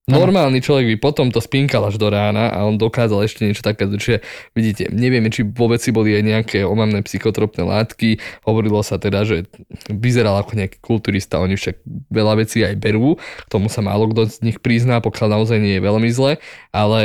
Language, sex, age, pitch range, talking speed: Slovak, male, 20-39, 105-120 Hz, 195 wpm